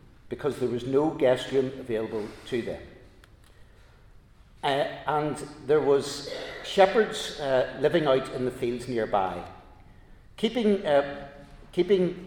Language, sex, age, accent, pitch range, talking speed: English, male, 60-79, British, 120-160 Hz, 115 wpm